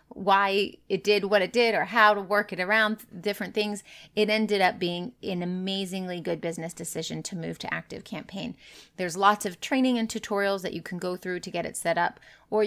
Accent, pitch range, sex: American, 175-215 Hz, female